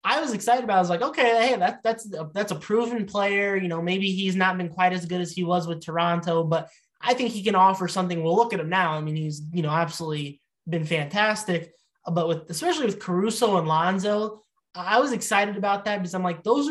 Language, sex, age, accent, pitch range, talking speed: English, male, 20-39, American, 170-200 Hz, 235 wpm